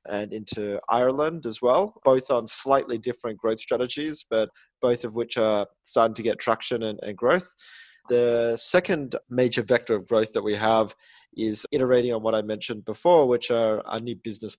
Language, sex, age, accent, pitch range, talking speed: English, male, 20-39, Australian, 110-130 Hz, 180 wpm